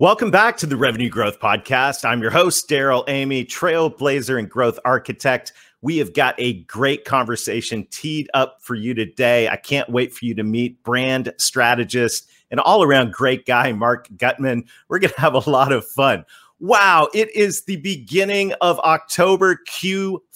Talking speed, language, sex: 170 wpm, English, male